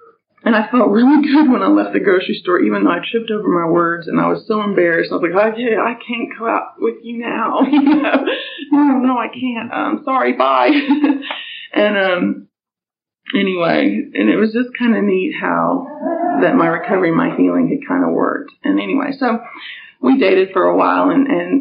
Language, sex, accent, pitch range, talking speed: English, female, American, 190-290 Hz, 210 wpm